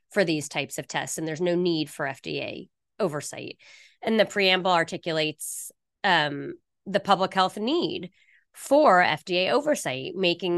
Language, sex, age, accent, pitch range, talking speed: English, female, 20-39, American, 160-205 Hz, 140 wpm